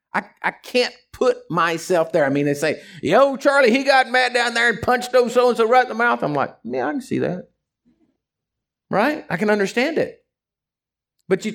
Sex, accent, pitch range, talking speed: male, American, 160-245 Hz, 205 wpm